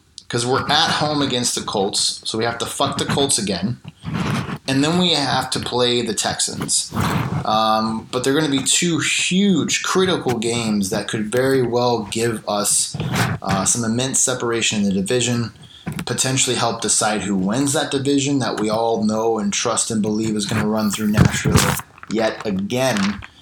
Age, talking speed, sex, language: 20-39, 175 wpm, male, English